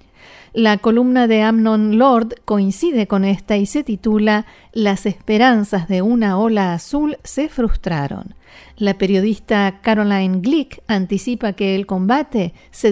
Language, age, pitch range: Spanish, 50-69, 195-240 Hz